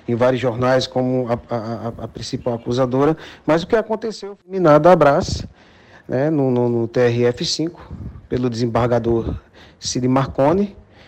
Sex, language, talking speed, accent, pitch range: male, Portuguese, 130 wpm, Brazilian, 120-165 Hz